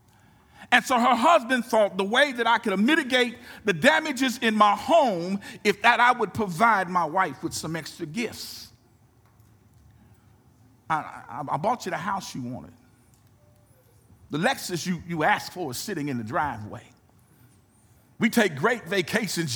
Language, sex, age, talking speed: English, male, 50-69, 155 wpm